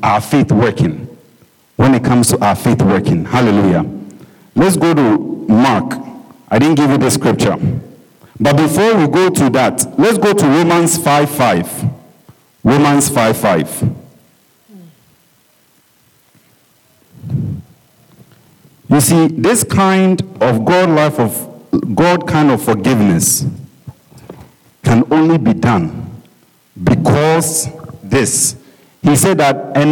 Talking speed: 115 wpm